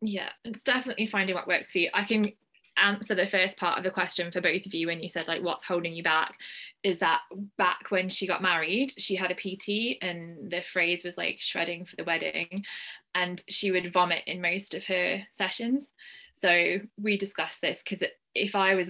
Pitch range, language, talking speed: 175-200 Hz, English, 210 wpm